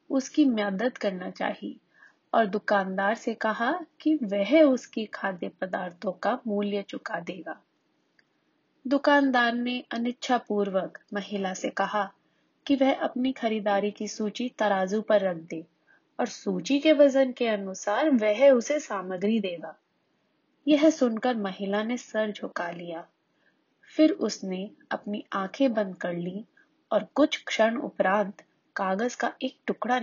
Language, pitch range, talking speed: English, 200-270 Hz, 120 wpm